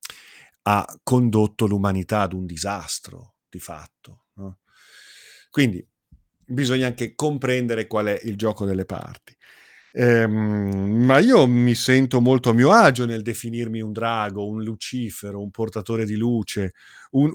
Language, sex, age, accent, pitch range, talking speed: Italian, male, 40-59, native, 105-135 Hz, 130 wpm